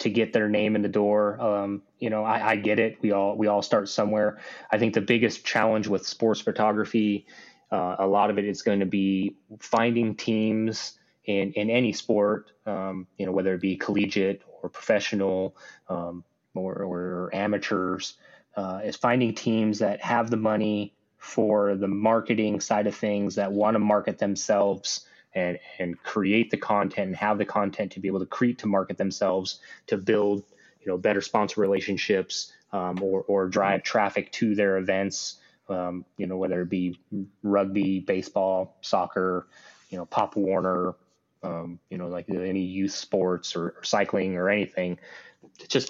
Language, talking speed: English, 175 wpm